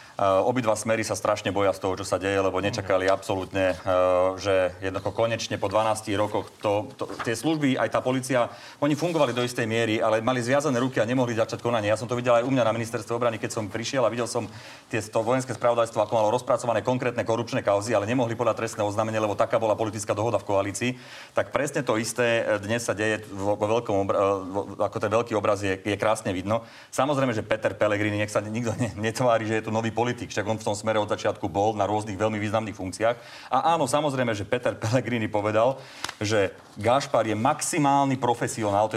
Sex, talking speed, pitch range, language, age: male, 200 wpm, 105-125 Hz, Slovak, 30-49